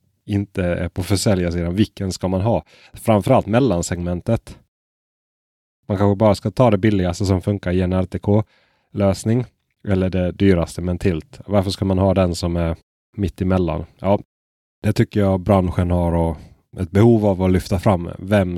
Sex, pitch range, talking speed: male, 85-105 Hz, 160 wpm